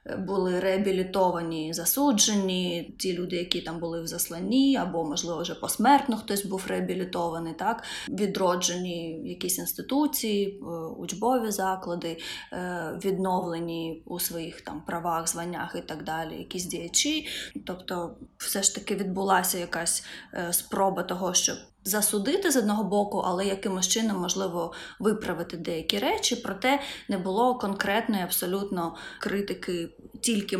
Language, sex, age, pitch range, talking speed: Ukrainian, female, 20-39, 170-215 Hz, 120 wpm